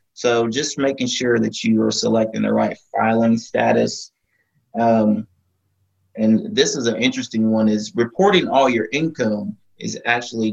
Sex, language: male, English